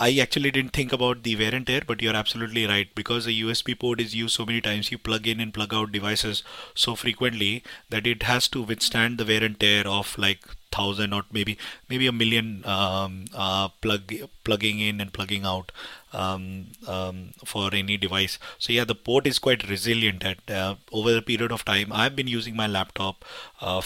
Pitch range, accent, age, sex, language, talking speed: 100-115 Hz, Indian, 30-49, male, English, 205 wpm